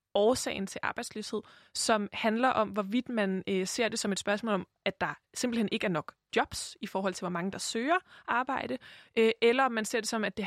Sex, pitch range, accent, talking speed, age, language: female, 205-250 Hz, native, 220 wpm, 20-39, Danish